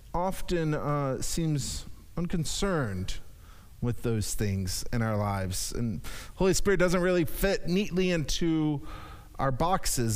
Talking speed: 120 wpm